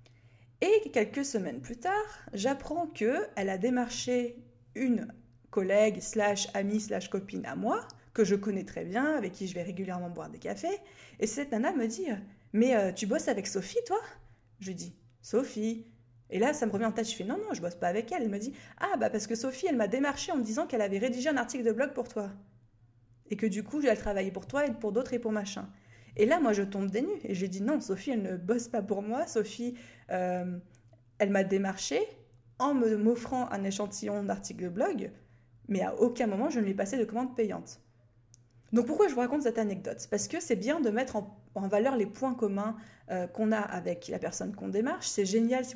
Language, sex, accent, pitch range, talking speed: French, female, French, 195-245 Hz, 235 wpm